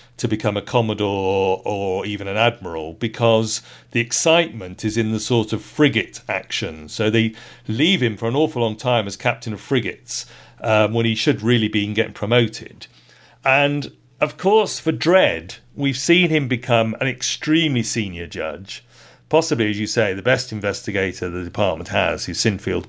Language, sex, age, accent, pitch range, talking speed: English, male, 40-59, British, 110-135 Hz, 170 wpm